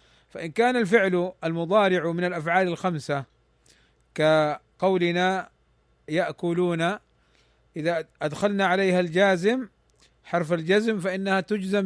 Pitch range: 155-195 Hz